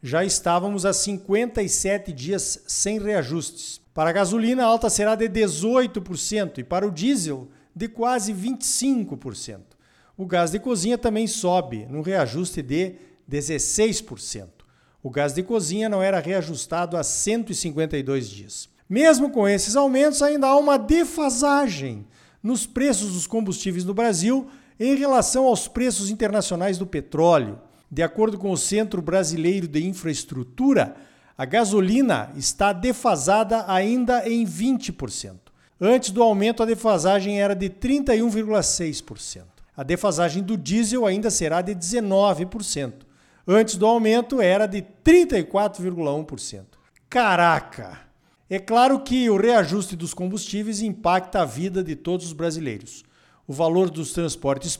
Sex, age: male, 50-69